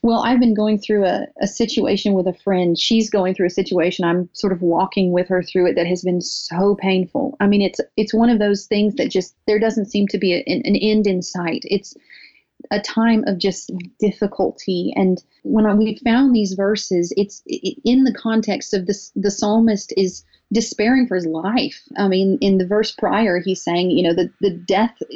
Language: English